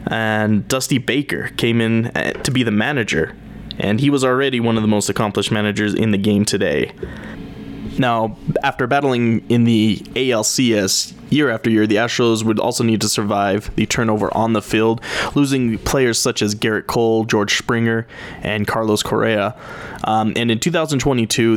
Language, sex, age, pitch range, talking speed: English, male, 20-39, 110-125 Hz, 165 wpm